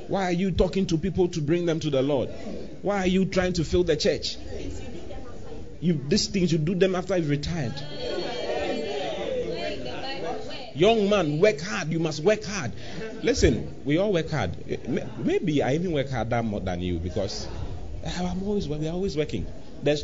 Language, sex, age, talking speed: English, male, 30-49, 180 wpm